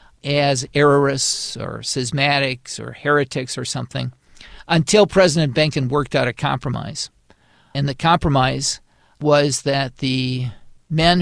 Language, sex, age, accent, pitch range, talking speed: English, male, 50-69, American, 135-160 Hz, 120 wpm